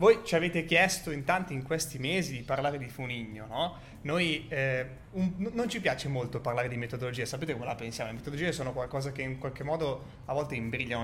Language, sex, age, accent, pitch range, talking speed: Italian, male, 20-39, native, 130-160 Hz, 210 wpm